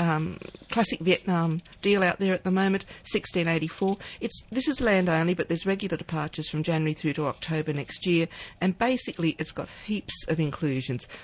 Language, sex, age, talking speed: English, female, 50-69, 175 wpm